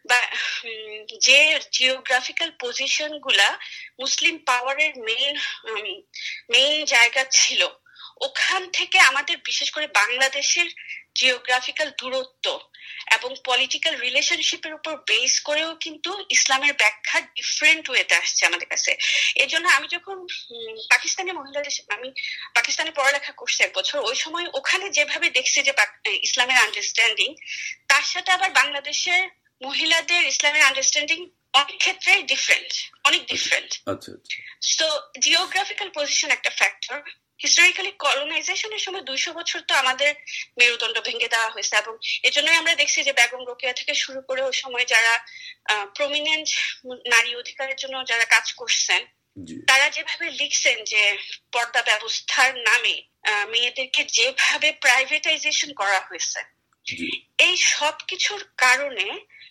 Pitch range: 255-345 Hz